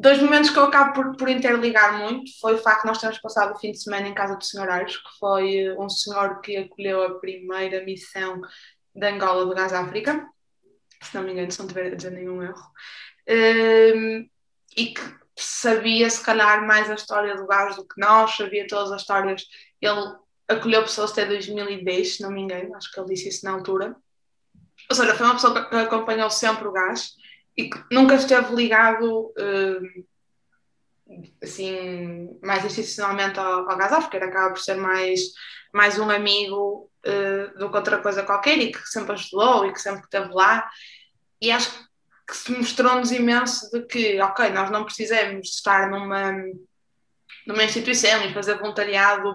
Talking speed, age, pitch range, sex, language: 175 wpm, 20-39, 195-225 Hz, female, Portuguese